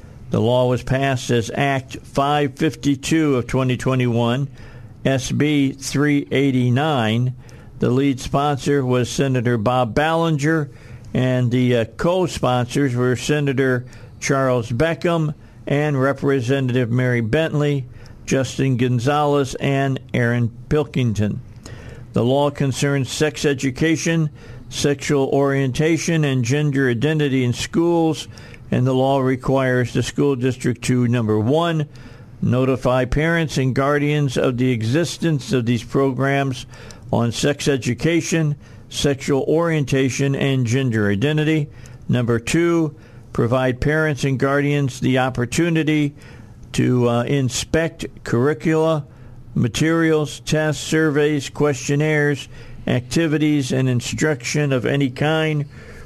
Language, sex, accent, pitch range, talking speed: English, male, American, 125-150 Hz, 105 wpm